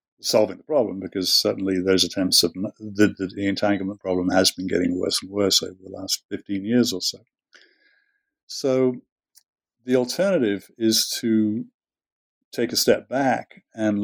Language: English